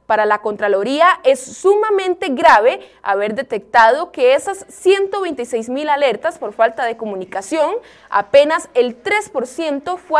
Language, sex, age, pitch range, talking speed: Spanish, female, 20-39, 225-325 Hz, 125 wpm